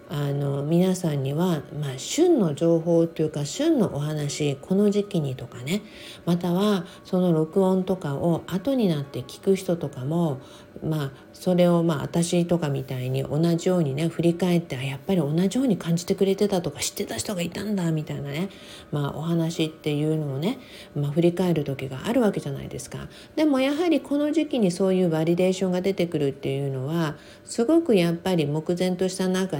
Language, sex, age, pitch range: Japanese, female, 50-69, 150-195 Hz